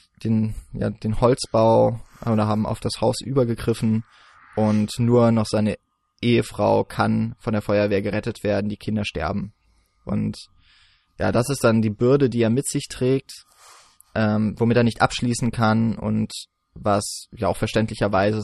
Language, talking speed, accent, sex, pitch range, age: German, 155 wpm, German, male, 105-115 Hz, 20-39